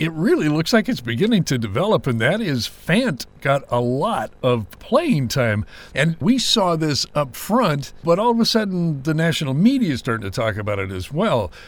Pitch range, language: 120-175 Hz, English